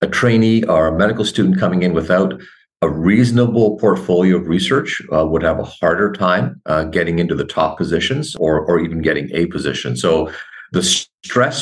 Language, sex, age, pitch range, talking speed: English, male, 50-69, 80-110 Hz, 180 wpm